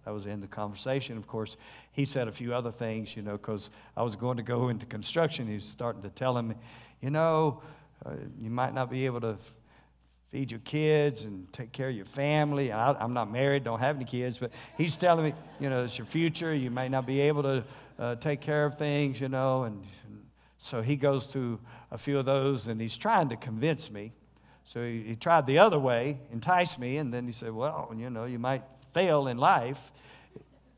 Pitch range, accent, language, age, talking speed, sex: 115-145 Hz, American, English, 50-69, 225 wpm, male